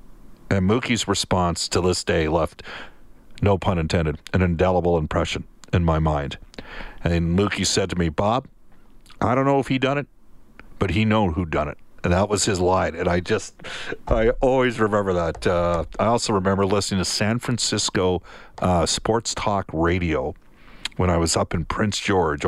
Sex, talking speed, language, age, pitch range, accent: male, 175 wpm, English, 50-69, 90-120 Hz, American